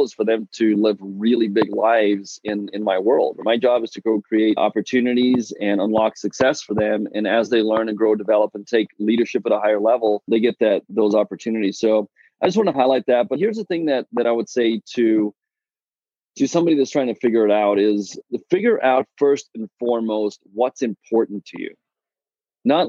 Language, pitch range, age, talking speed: English, 105-130 Hz, 30-49, 210 wpm